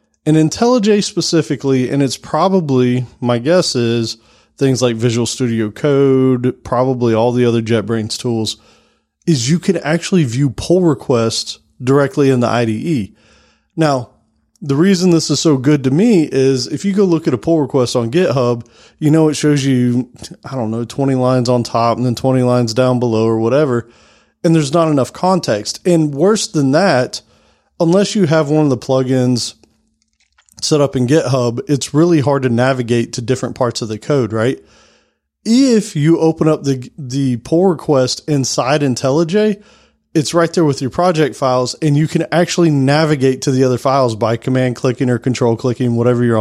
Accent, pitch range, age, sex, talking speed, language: American, 125-160 Hz, 30-49, male, 175 wpm, English